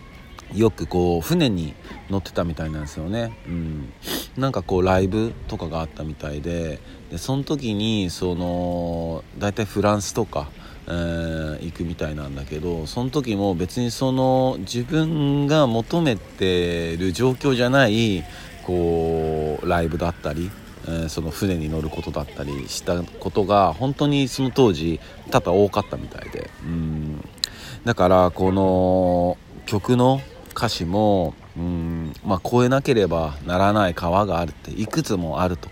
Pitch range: 80-110 Hz